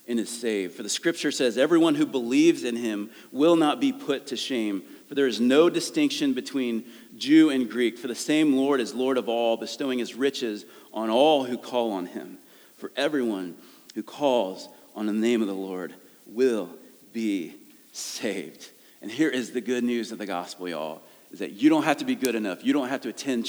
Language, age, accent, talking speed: English, 40-59, American, 205 wpm